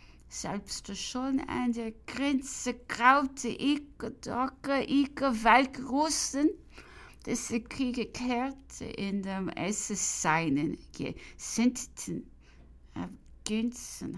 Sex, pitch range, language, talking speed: female, 210-275 Hz, English, 85 wpm